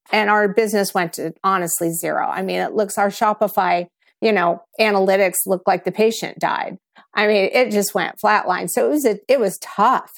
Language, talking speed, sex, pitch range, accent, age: English, 200 wpm, female, 175-205 Hz, American, 50-69